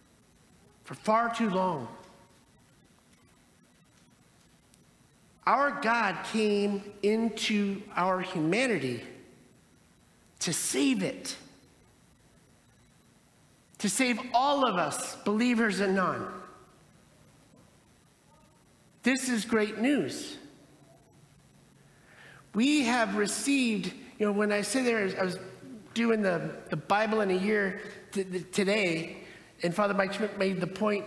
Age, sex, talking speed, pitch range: 50-69, male, 100 wpm, 195-245 Hz